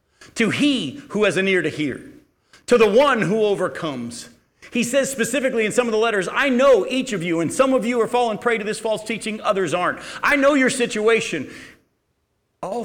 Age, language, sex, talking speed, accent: 50-69, English, male, 205 wpm, American